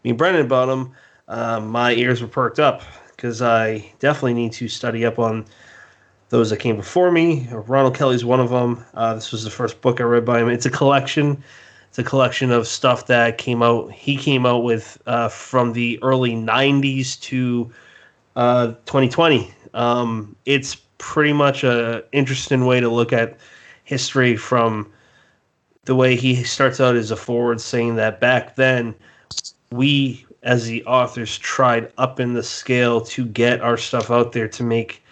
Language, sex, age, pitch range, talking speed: English, male, 30-49, 115-130 Hz, 175 wpm